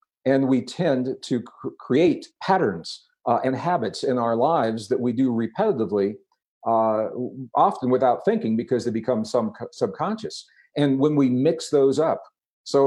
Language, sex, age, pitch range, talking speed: English, male, 50-69, 115-145 Hz, 155 wpm